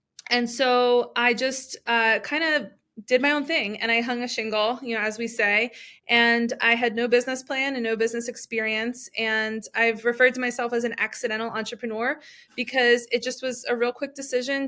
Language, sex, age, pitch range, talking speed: English, female, 20-39, 225-250 Hz, 195 wpm